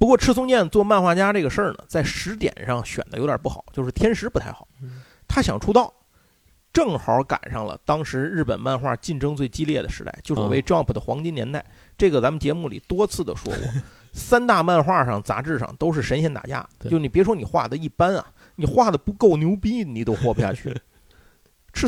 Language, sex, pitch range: Chinese, male, 120-185 Hz